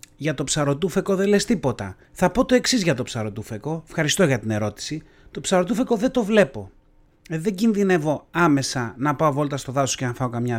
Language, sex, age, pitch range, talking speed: Greek, male, 30-49, 125-205 Hz, 195 wpm